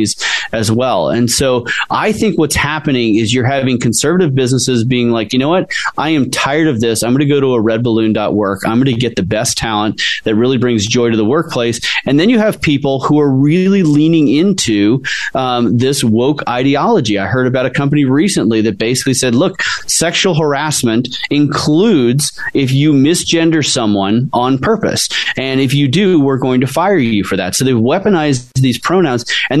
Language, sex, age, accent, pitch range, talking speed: English, male, 30-49, American, 120-150 Hz, 195 wpm